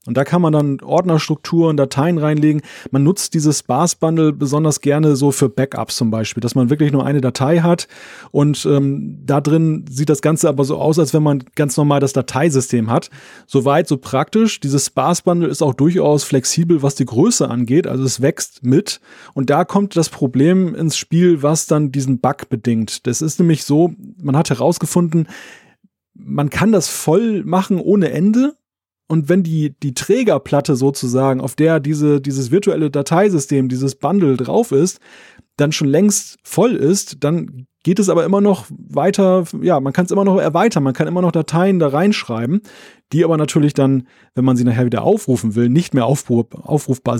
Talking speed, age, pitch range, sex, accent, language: 180 wpm, 30-49, 135-170 Hz, male, German, German